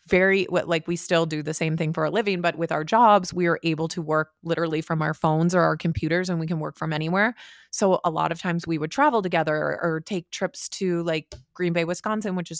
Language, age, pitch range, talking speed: English, 30-49, 165-200 Hz, 250 wpm